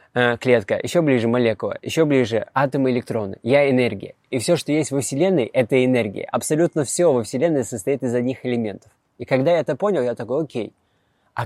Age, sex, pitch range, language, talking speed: 20-39, male, 120-150 Hz, Russian, 185 wpm